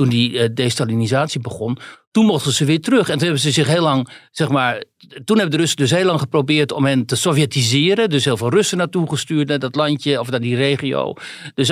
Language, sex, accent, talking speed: Dutch, male, Dutch, 225 wpm